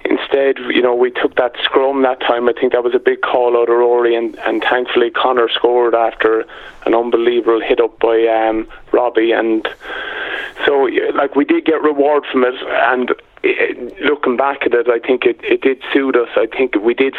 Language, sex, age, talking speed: English, male, 20-39, 200 wpm